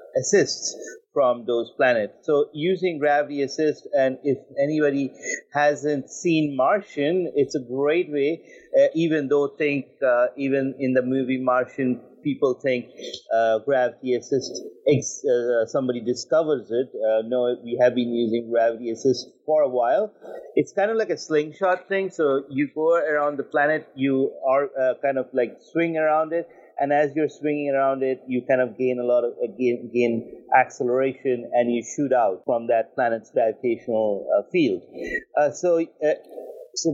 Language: English